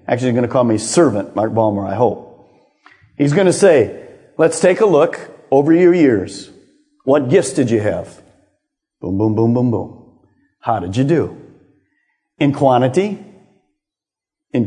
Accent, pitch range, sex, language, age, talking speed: American, 115-180 Hz, male, English, 50-69, 160 wpm